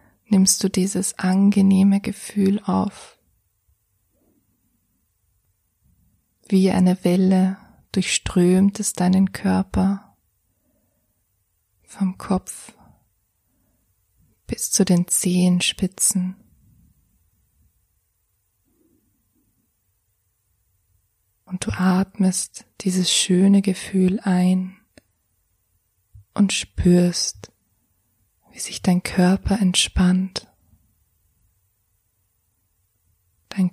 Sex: female